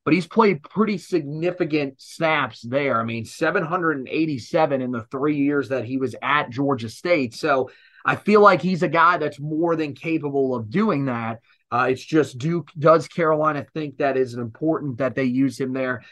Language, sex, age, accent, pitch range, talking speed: English, male, 30-49, American, 135-165 Hz, 180 wpm